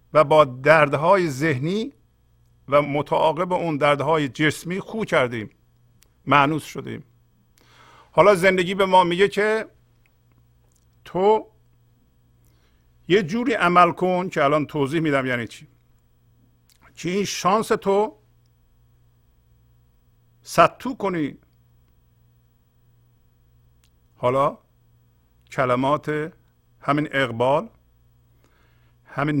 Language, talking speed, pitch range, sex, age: English, 90 wpm, 120-150 Hz, male, 50-69